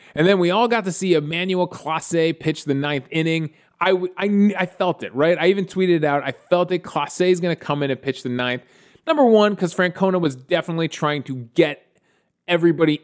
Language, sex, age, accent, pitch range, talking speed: English, male, 20-39, American, 135-185 Hz, 210 wpm